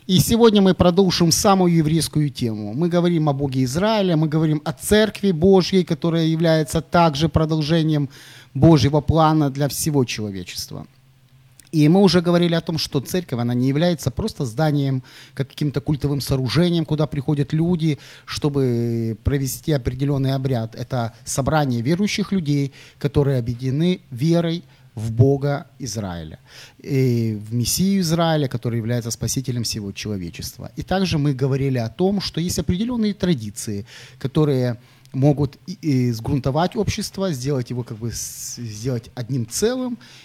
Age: 30-49